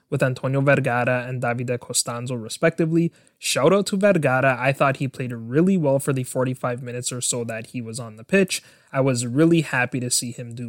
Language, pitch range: English, 125-160 Hz